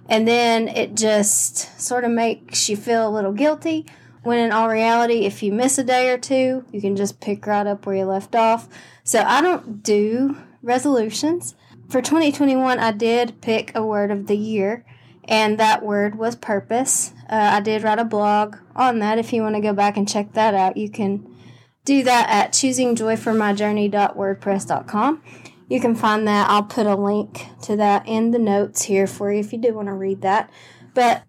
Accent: American